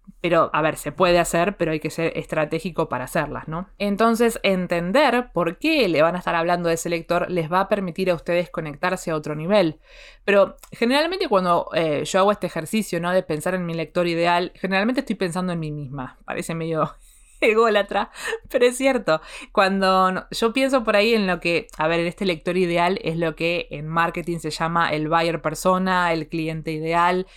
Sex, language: female, Spanish